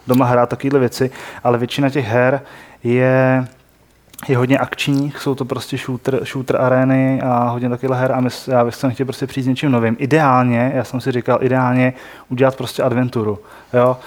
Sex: male